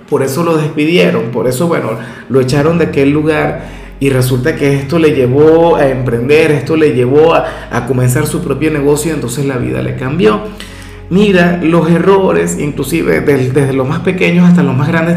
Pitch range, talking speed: 145-185 Hz, 185 wpm